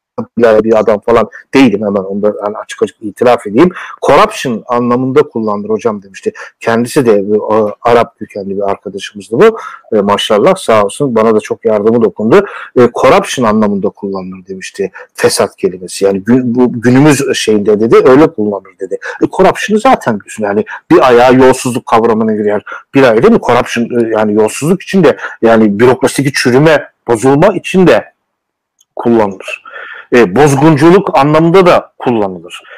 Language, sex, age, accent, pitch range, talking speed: Turkish, male, 60-79, native, 110-185 Hz, 135 wpm